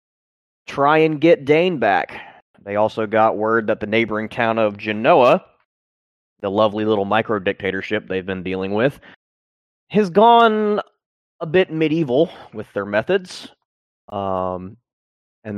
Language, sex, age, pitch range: English, male, 30-49, 105-135 Hz